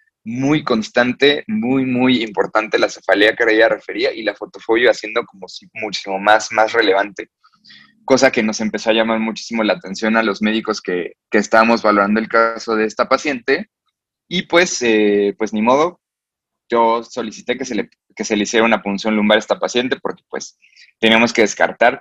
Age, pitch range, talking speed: 20-39, 105-130 Hz, 180 wpm